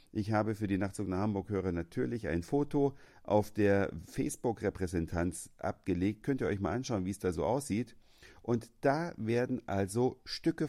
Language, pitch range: German, 90-120 Hz